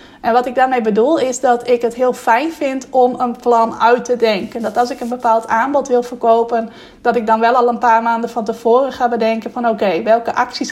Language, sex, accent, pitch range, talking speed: Dutch, female, Dutch, 225-250 Hz, 235 wpm